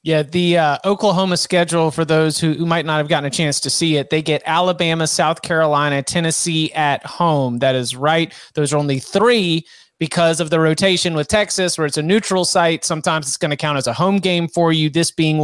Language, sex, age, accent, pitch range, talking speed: English, male, 30-49, American, 150-180 Hz, 220 wpm